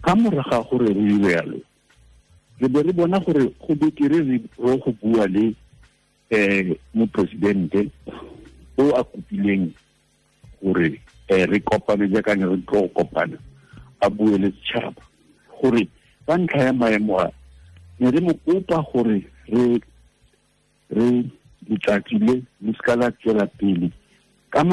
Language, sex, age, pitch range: English, male, 60-79, 95-130 Hz